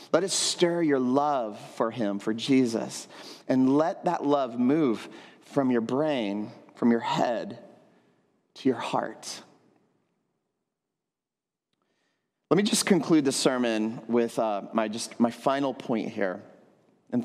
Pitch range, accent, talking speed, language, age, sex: 120-165 Hz, American, 130 wpm, English, 30-49, male